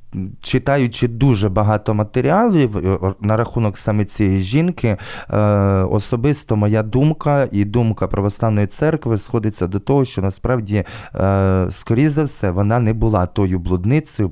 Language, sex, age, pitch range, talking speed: Ukrainian, male, 20-39, 95-125 Hz, 130 wpm